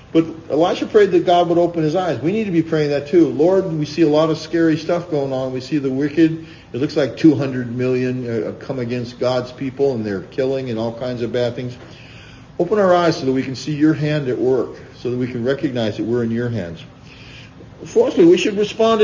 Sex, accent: male, American